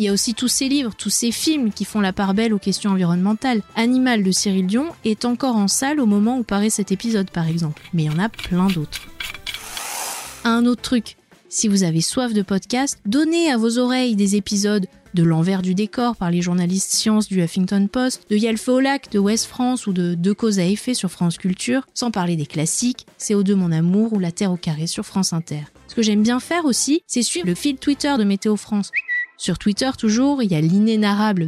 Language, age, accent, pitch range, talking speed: French, 30-49, French, 185-240 Hz, 255 wpm